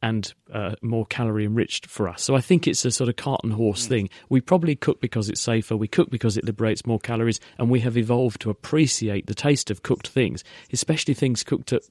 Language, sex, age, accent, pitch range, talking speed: English, male, 40-59, British, 110-125 Hz, 225 wpm